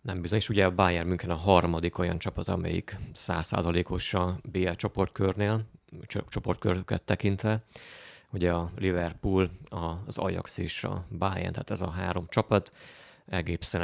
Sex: male